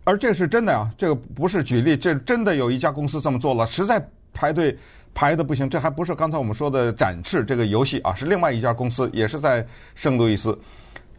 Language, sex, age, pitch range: Chinese, male, 50-69, 125-180 Hz